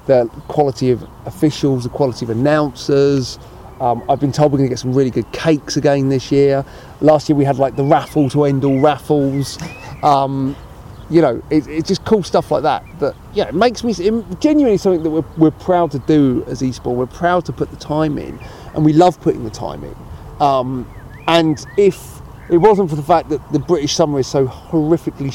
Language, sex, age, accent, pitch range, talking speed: English, male, 30-49, British, 130-160 Hz, 205 wpm